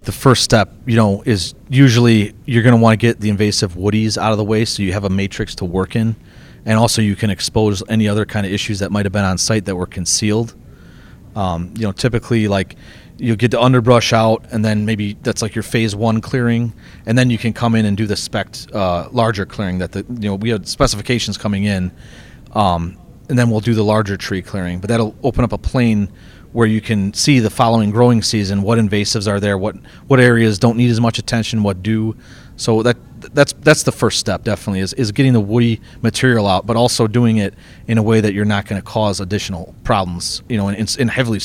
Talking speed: 235 wpm